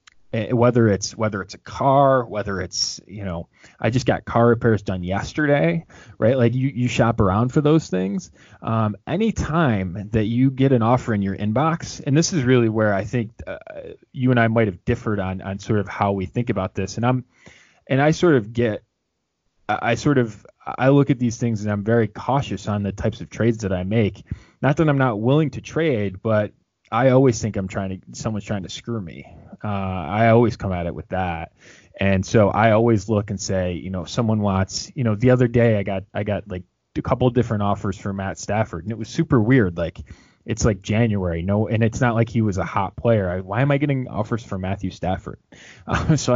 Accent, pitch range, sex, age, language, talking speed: American, 100-125 Hz, male, 20-39, English, 220 wpm